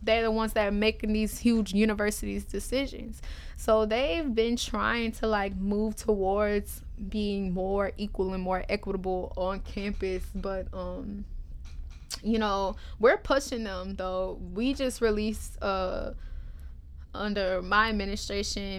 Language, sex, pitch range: English, female, 185-210 Hz